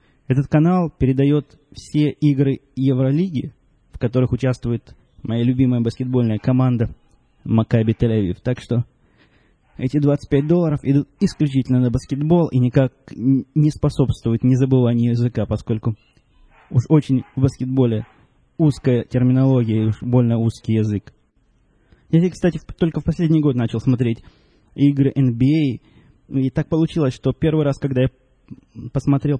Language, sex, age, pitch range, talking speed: Russian, male, 20-39, 120-145 Hz, 125 wpm